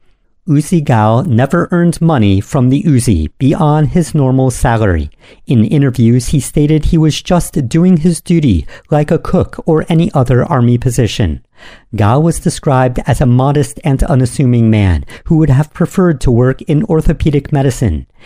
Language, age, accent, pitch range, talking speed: English, 50-69, American, 115-160 Hz, 160 wpm